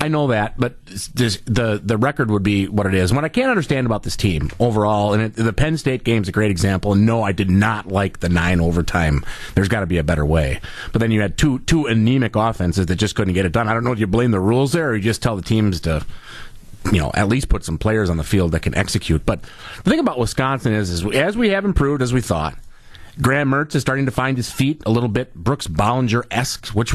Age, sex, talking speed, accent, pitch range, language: 30-49, male, 265 wpm, American, 105-145 Hz, English